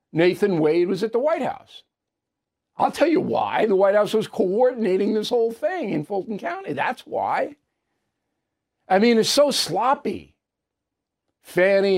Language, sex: English, male